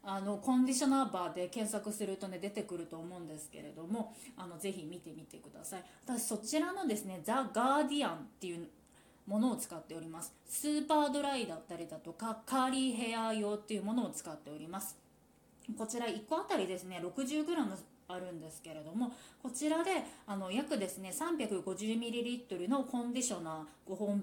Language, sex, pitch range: Japanese, female, 180-265 Hz